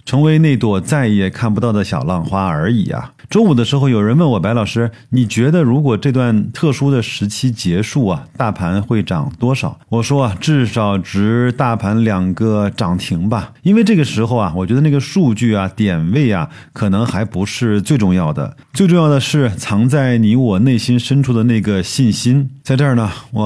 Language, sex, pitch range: Chinese, male, 100-135 Hz